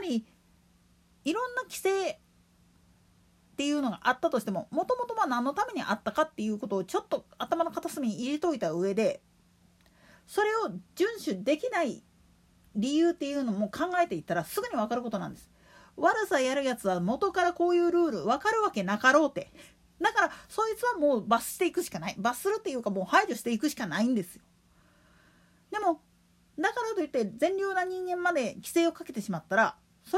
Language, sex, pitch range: Japanese, female, 220-350 Hz